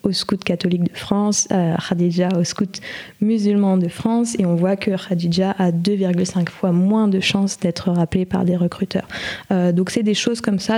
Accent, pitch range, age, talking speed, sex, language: French, 180-205 Hz, 20-39, 195 wpm, female, French